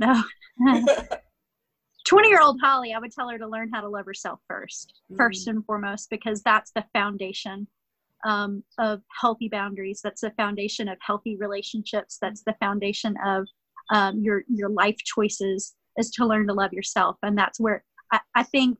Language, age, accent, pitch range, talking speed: English, 30-49, American, 215-250 Hz, 170 wpm